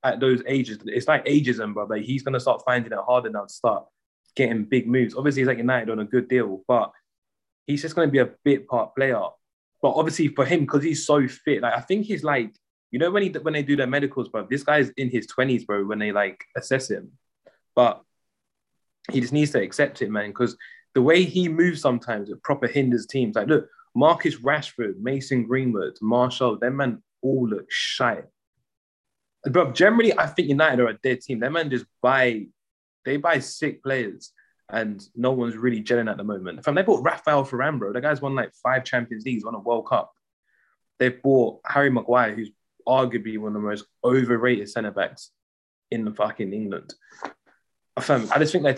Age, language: 20-39, English